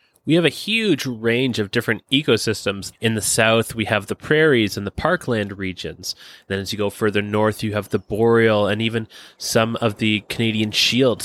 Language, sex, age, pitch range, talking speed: English, male, 20-39, 110-135 Hz, 190 wpm